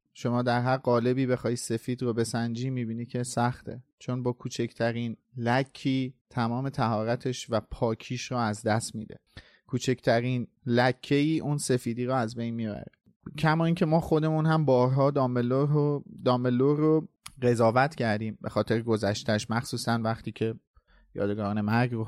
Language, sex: Persian, male